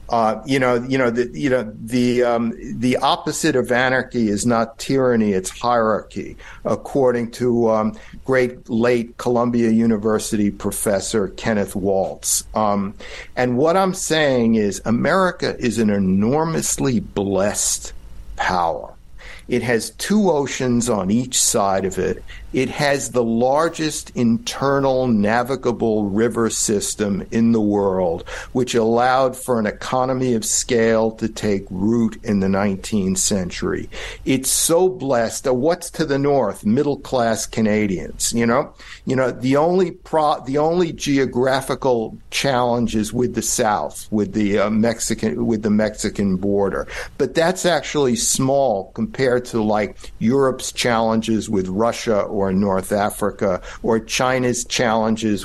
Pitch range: 110-135 Hz